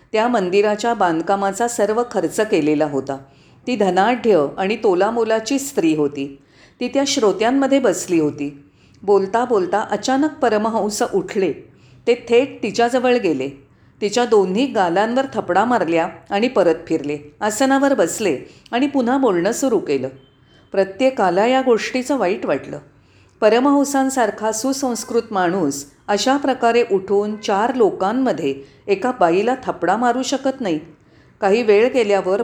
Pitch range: 185-250 Hz